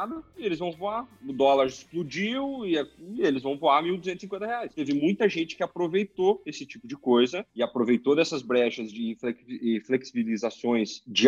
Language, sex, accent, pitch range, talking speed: Portuguese, male, Brazilian, 125-170 Hz, 155 wpm